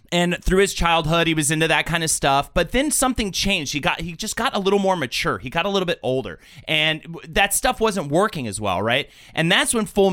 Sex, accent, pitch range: male, American, 135-185 Hz